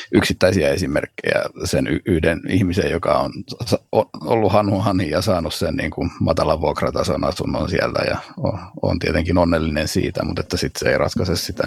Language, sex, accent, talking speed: Finnish, male, native, 155 wpm